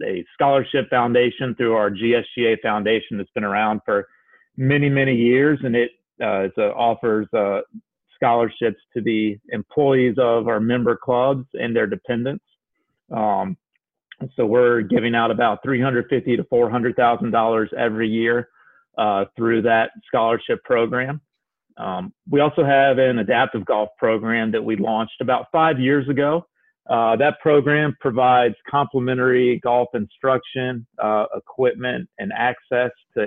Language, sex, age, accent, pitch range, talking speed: English, male, 40-59, American, 115-130 Hz, 135 wpm